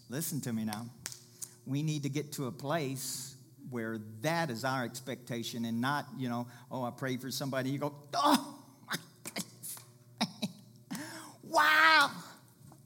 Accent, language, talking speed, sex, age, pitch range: American, English, 145 wpm, male, 50-69, 120-150 Hz